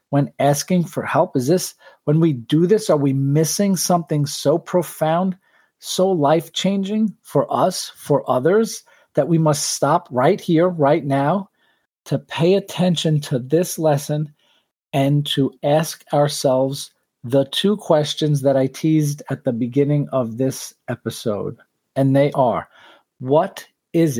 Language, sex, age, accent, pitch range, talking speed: English, male, 40-59, American, 140-175 Hz, 145 wpm